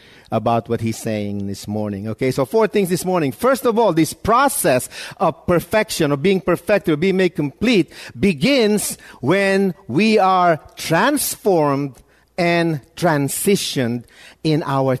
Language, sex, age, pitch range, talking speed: English, male, 50-69, 140-200 Hz, 140 wpm